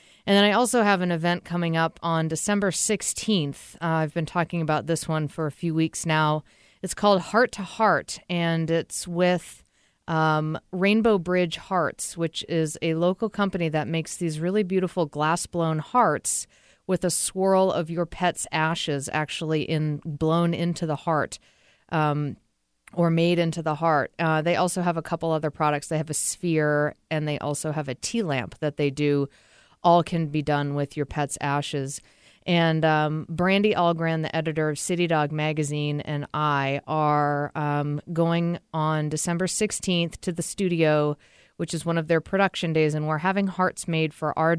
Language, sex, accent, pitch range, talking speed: English, female, American, 150-175 Hz, 180 wpm